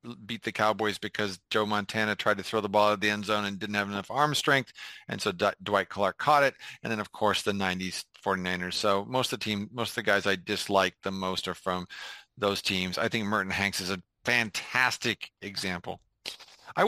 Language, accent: English, American